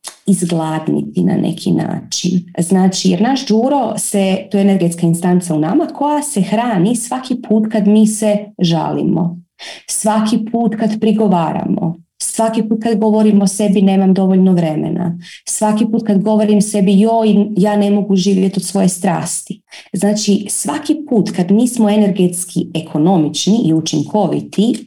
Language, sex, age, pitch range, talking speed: Croatian, female, 30-49, 175-220 Hz, 145 wpm